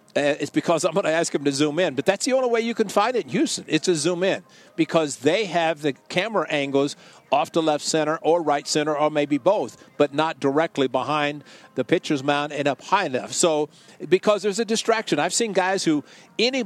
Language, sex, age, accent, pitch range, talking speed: English, male, 50-69, American, 140-185 Hz, 225 wpm